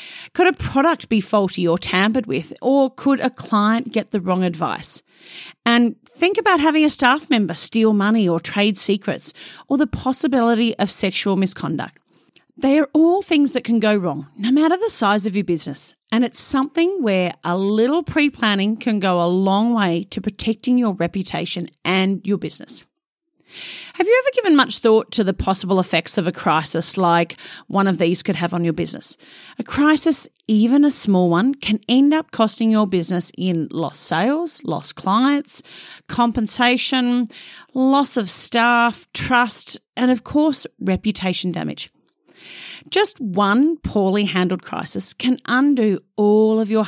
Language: English